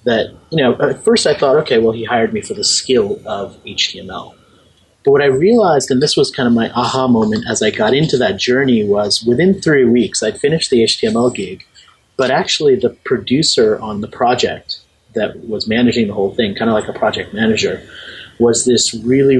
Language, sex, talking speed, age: English, male, 205 wpm, 30-49